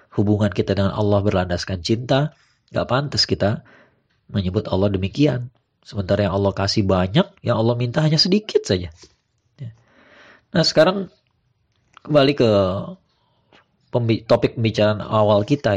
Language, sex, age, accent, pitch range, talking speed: Indonesian, male, 30-49, native, 100-130 Hz, 120 wpm